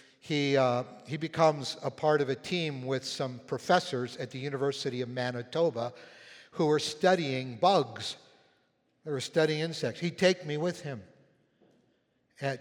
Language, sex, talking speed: English, male, 150 wpm